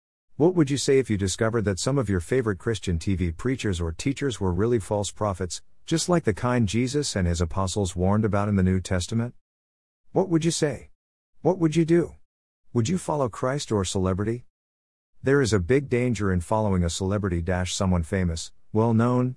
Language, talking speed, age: English, 185 wpm, 50-69